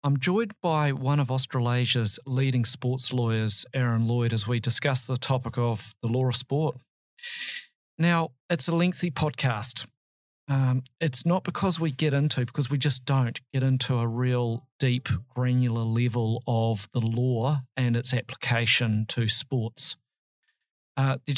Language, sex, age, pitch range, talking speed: English, male, 40-59, 120-145 Hz, 150 wpm